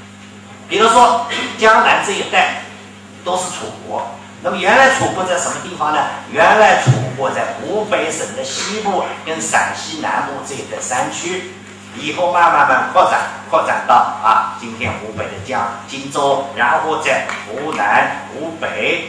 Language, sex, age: Chinese, male, 50-69